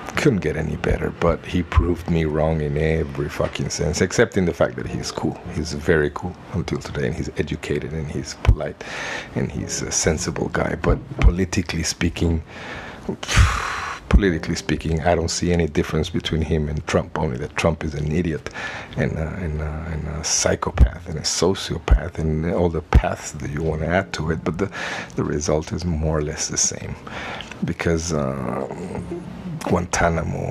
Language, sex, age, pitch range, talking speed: English, male, 50-69, 80-90 Hz, 170 wpm